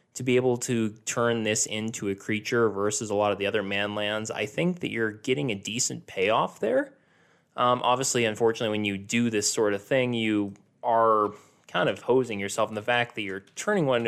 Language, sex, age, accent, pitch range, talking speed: English, male, 20-39, American, 105-130 Hz, 210 wpm